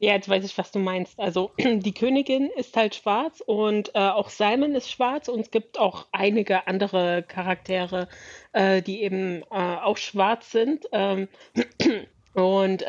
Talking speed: 165 wpm